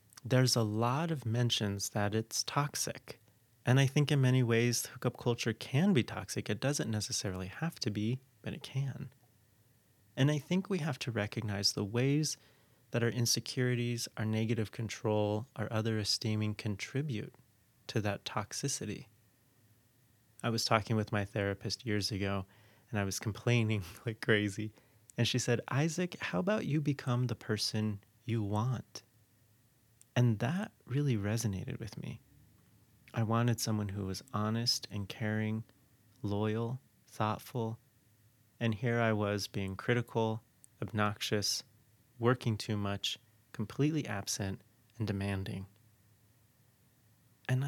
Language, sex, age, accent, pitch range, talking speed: English, male, 30-49, American, 105-125 Hz, 135 wpm